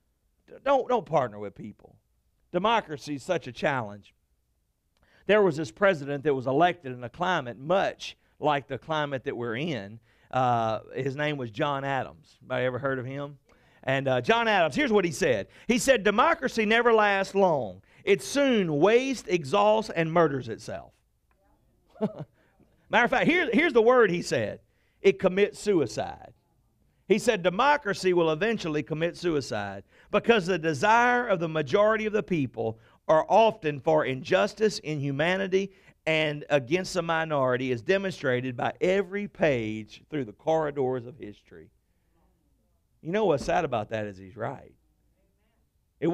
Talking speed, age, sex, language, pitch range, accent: 150 wpm, 50-69, male, English, 135-205 Hz, American